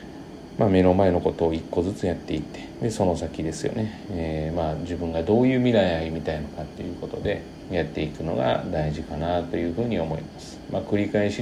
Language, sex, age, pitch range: Japanese, male, 40-59, 80-110 Hz